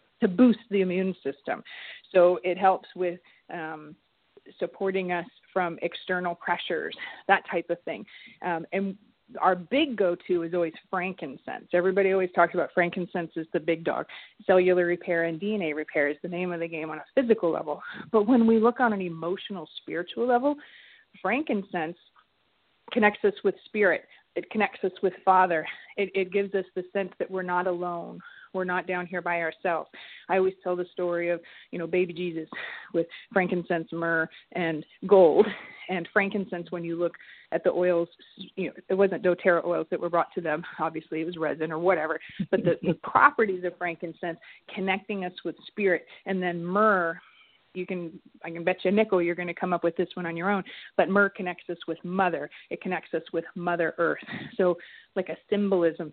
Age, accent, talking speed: 30-49, American, 185 wpm